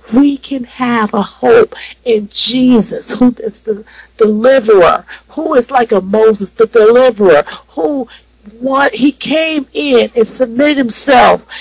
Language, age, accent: English, 50-69, American